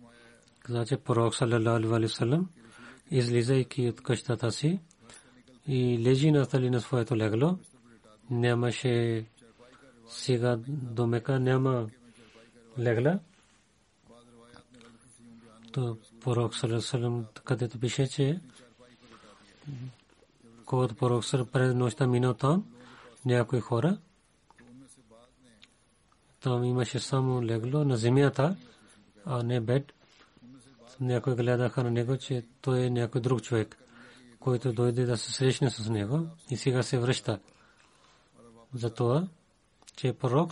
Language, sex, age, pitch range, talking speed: Bulgarian, male, 40-59, 120-135 Hz, 95 wpm